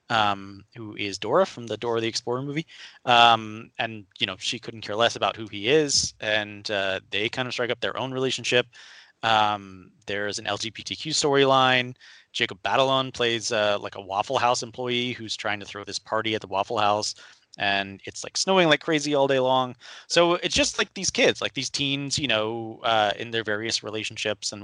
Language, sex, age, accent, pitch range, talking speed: English, male, 20-39, American, 105-130 Hz, 200 wpm